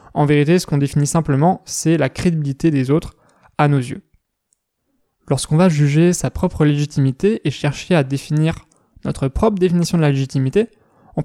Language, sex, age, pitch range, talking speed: French, male, 20-39, 145-185 Hz, 165 wpm